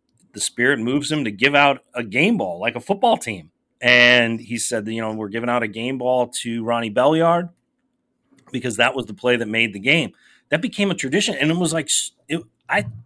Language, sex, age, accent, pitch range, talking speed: English, male, 30-49, American, 115-145 Hz, 210 wpm